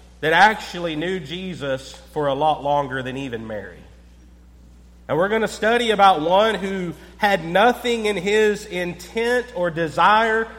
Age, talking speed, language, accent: 40-59, 145 wpm, English, American